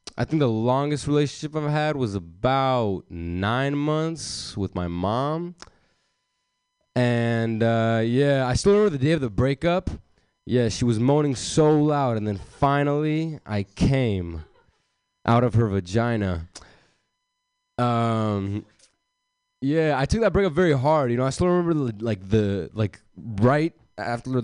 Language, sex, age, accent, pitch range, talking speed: English, male, 20-39, American, 100-145 Hz, 145 wpm